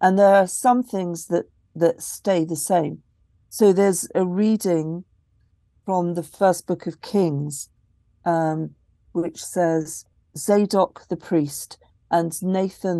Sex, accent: female, British